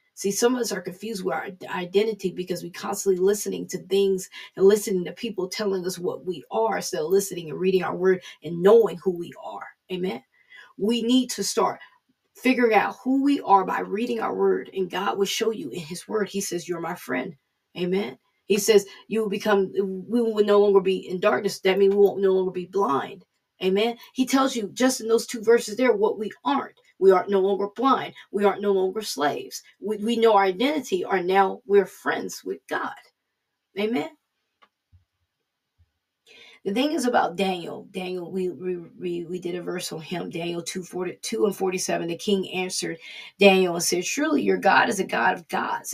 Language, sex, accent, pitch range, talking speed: English, female, American, 185-225 Hz, 200 wpm